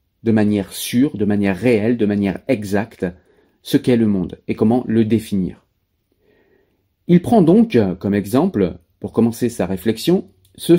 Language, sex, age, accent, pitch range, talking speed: French, male, 40-59, French, 100-130 Hz, 150 wpm